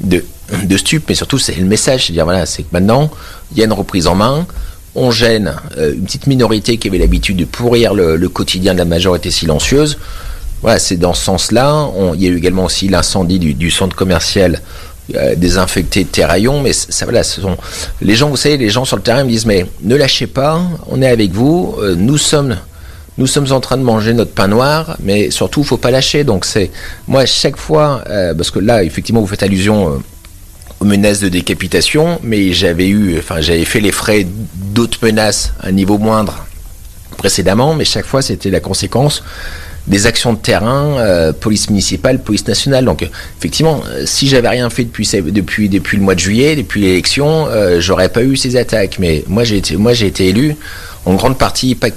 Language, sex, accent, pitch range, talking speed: French, male, French, 90-125 Hz, 210 wpm